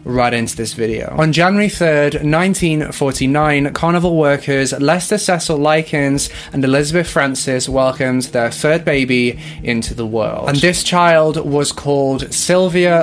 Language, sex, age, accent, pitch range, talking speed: English, male, 20-39, British, 135-170 Hz, 135 wpm